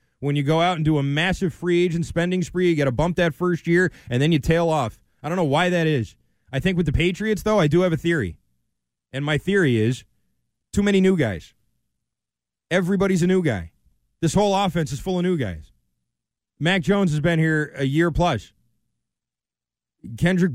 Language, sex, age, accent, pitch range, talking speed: English, male, 20-39, American, 130-185 Hz, 205 wpm